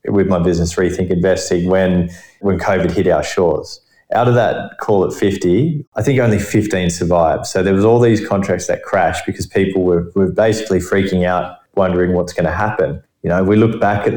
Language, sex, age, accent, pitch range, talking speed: English, male, 20-39, Australian, 90-105 Hz, 205 wpm